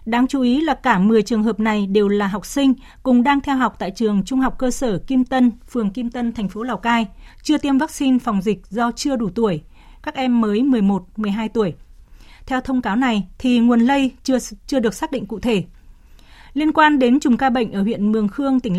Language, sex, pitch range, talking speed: Vietnamese, female, 210-260 Hz, 225 wpm